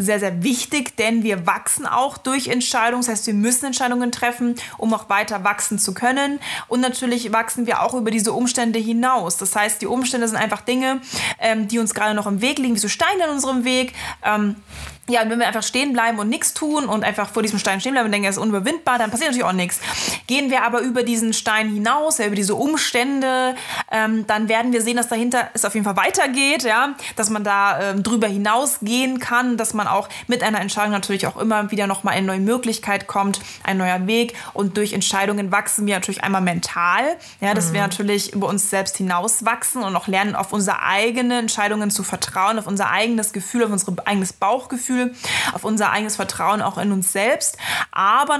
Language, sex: German, female